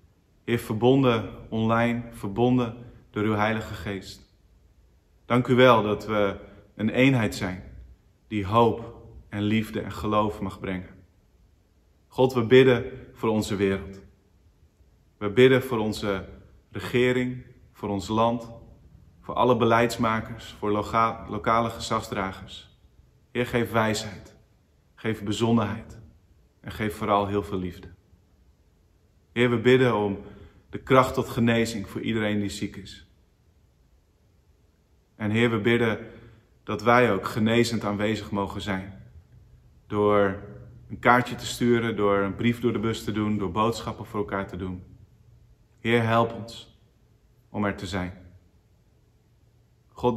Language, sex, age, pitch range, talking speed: Dutch, male, 30-49, 95-115 Hz, 125 wpm